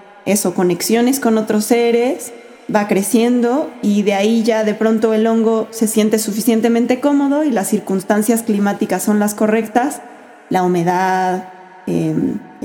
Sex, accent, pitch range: female, Mexican, 185-230 Hz